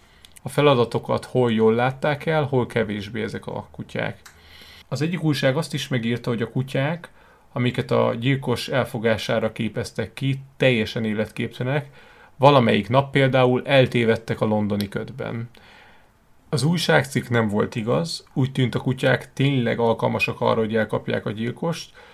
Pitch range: 110-130 Hz